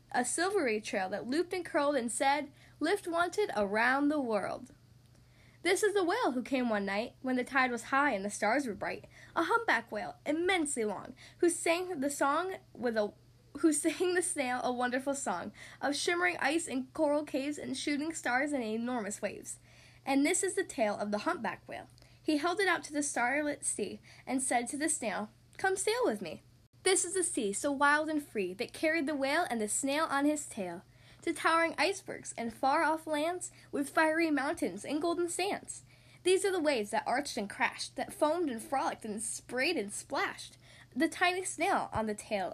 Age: 10-29